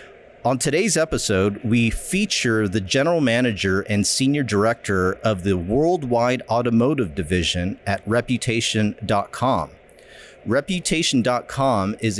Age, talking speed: 40-59, 100 wpm